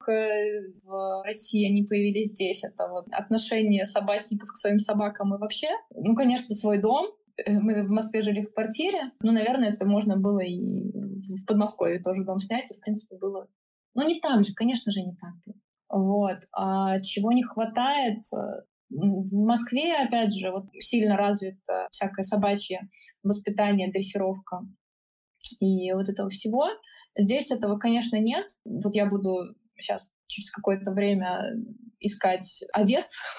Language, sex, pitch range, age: Russian, female, 195-225 Hz, 20-39